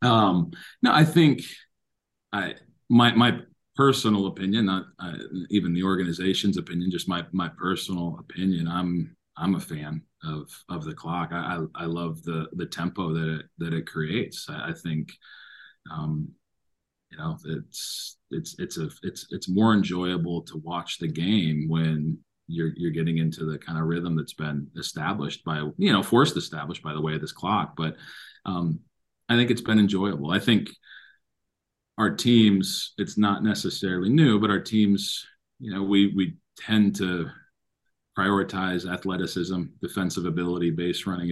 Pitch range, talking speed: 85-95 Hz, 160 wpm